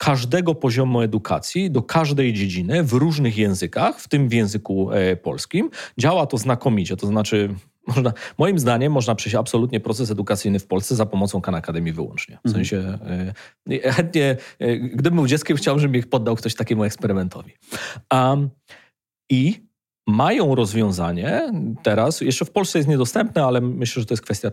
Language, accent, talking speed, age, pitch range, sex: Polish, native, 160 wpm, 30-49, 105-135 Hz, male